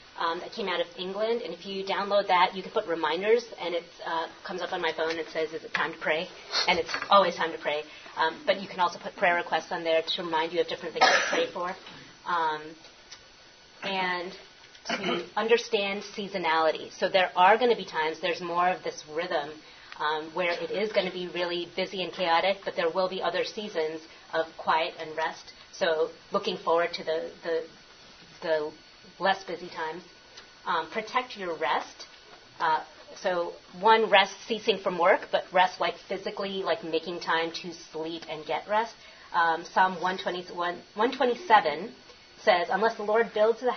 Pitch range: 165-205 Hz